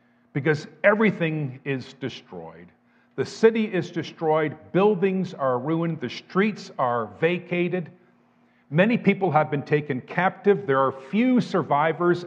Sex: male